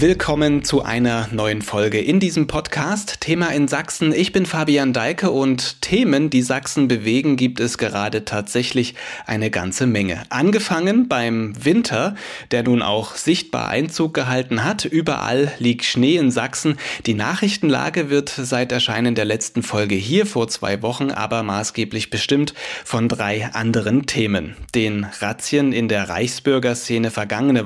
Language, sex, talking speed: German, male, 145 wpm